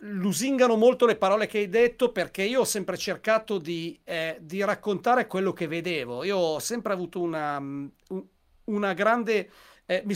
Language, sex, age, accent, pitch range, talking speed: Italian, male, 40-59, native, 170-215 Hz, 160 wpm